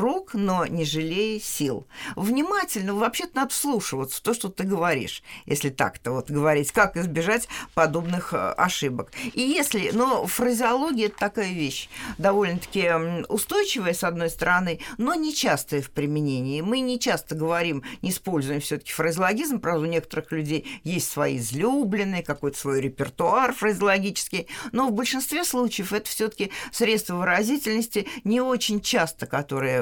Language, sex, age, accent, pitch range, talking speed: Russian, female, 50-69, native, 155-230 Hz, 145 wpm